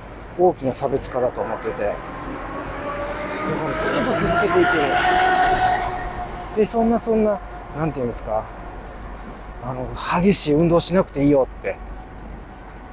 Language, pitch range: Japanese, 115-180 Hz